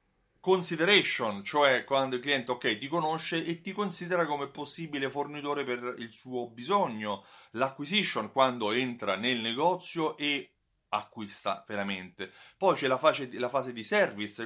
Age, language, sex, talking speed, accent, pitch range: 30-49, Italian, male, 145 wpm, native, 110-160 Hz